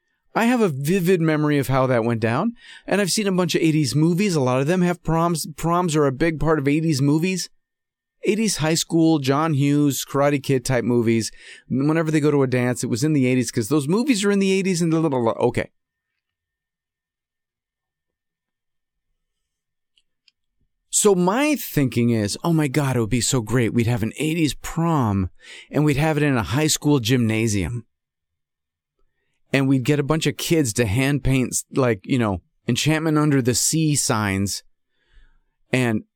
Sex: male